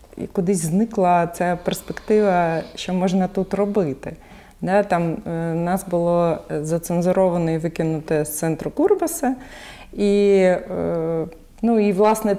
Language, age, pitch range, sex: Ukrainian, 30-49, 175-210 Hz, female